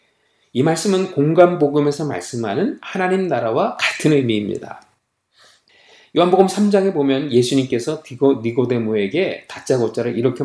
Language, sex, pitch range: Korean, male, 135-195 Hz